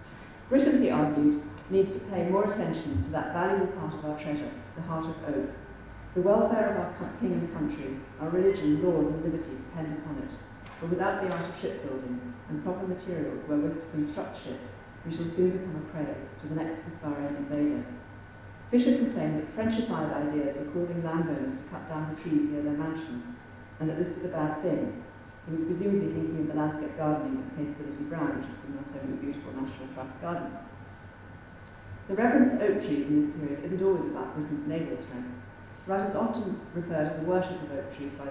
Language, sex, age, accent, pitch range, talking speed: English, female, 40-59, British, 135-180 Hz, 200 wpm